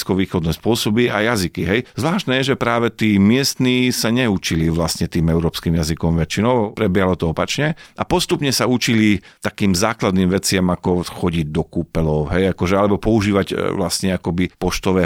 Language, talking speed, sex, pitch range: Slovak, 155 wpm, male, 95-115 Hz